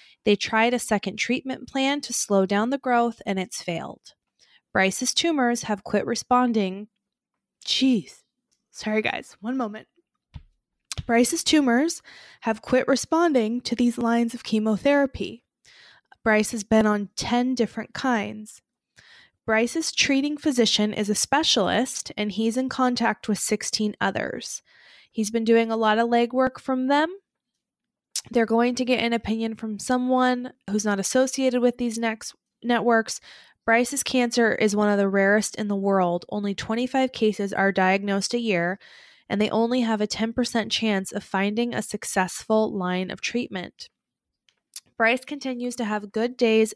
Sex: female